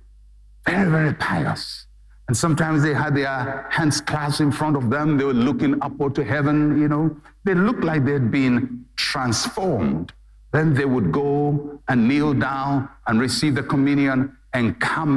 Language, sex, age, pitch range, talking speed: English, male, 60-79, 140-205 Hz, 165 wpm